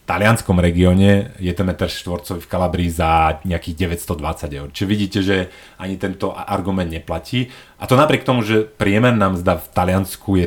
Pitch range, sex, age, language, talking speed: 85-105 Hz, male, 30-49, Slovak, 170 wpm